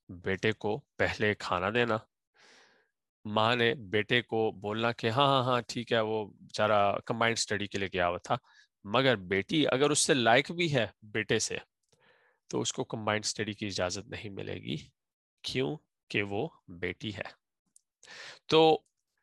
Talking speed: 150 wpm